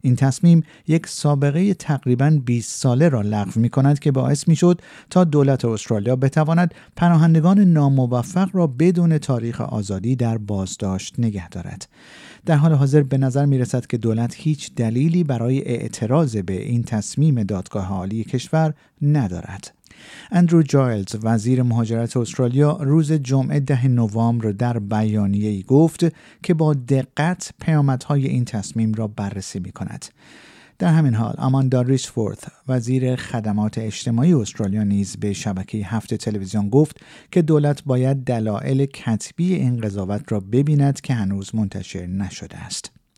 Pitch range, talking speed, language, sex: 110-155 Hz, 135 wpm, Persian, male